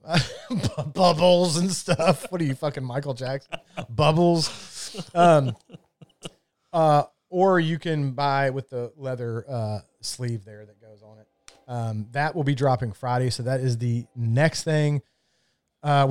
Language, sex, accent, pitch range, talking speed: English, male, American, 120-160 Hz, 150 wpm